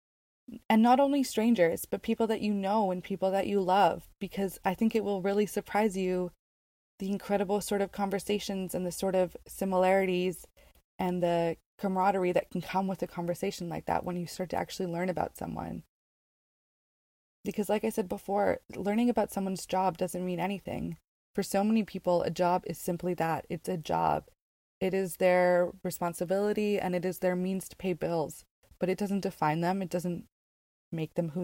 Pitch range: 180-200 Hz